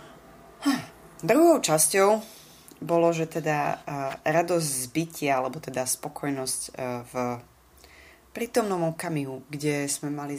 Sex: female